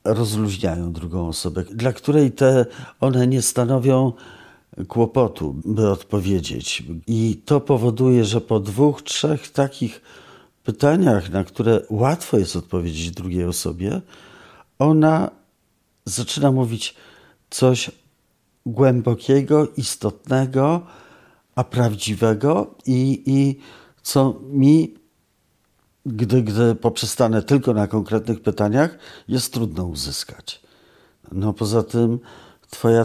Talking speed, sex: 100 wpm, male